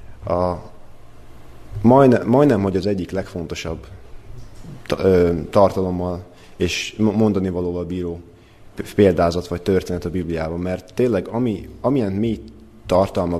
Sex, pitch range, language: male, 90-110 Hz, Hungarian